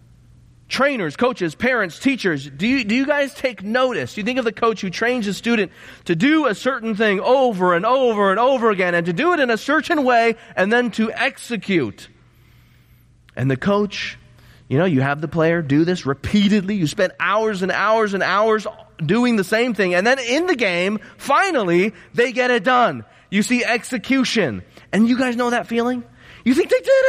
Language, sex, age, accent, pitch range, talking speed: English, male, 30-49, American, 140-240 Hz, 195 wpm